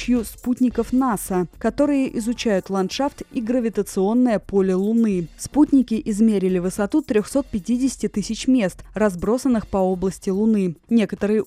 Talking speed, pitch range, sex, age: 105 wpm, 195-250 Hz, female, 20-39